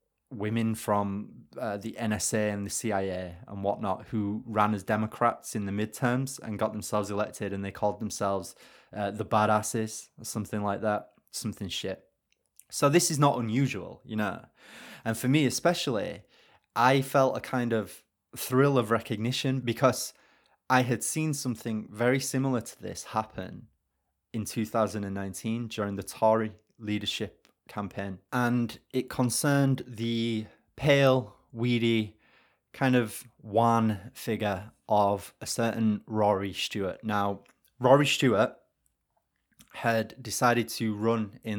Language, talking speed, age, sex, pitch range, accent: English, 135 wpm, 20-39, male, 105-125 Hz, British